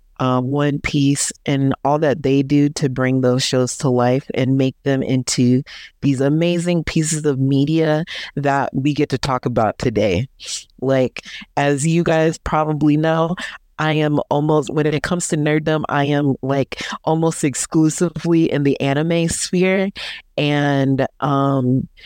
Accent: American